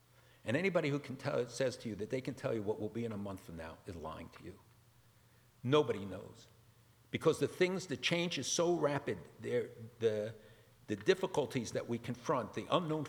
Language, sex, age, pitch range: English, male, 50-69, 110-140 Hz